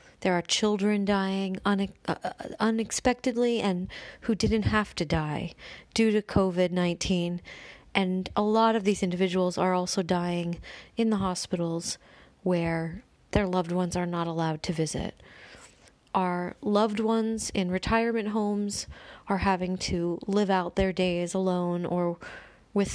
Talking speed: 140 wpm